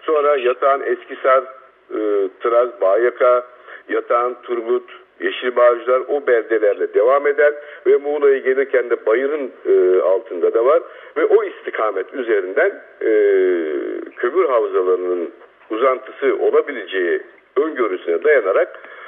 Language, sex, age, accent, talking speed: Turkish, male, 60-79, native, 105 wpm